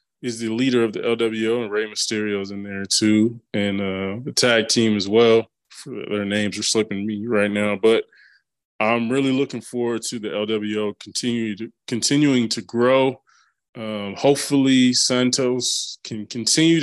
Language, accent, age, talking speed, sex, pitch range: English, American, 20-39, 160 wpm, male, 105-125 Hz